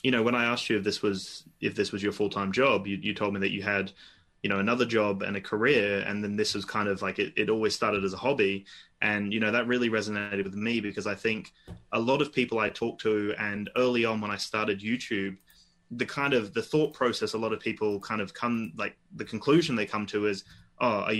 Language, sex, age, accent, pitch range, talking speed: English, male, 20-39, Australian, 100-115 Hz, 260 wpm